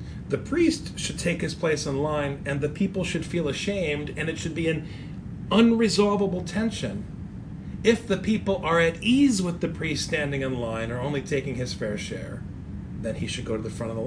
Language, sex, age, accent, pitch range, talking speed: English, male, 40-59, American, 155-200 Hz, 205 wpm